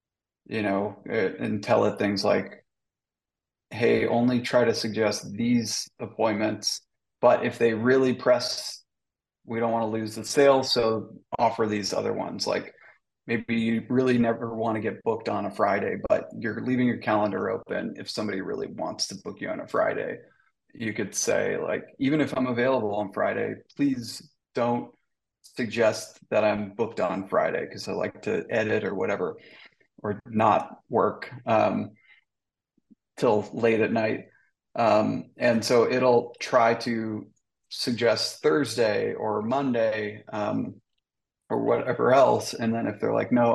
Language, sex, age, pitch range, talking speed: English, male, 30-49, 110-125 Hz, 155 wpm